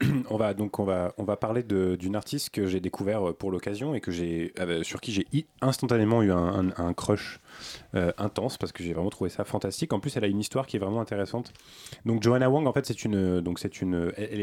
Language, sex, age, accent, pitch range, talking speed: French, male, 20-39, French, 95-110 Hz, 245 wpm